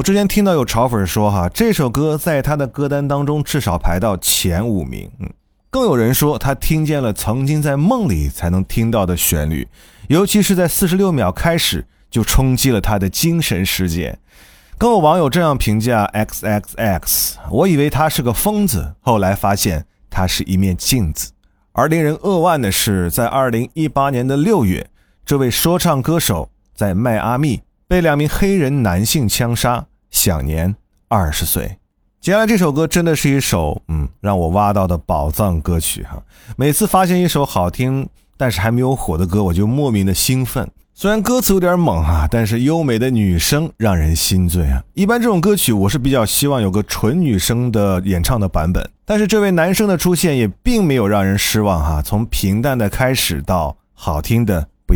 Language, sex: Chinese, male